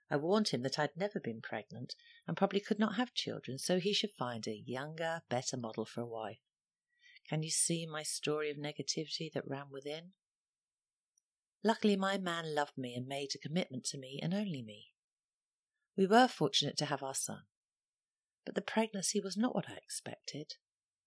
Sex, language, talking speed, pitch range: female, English, 180 wpm, 135-195 Hz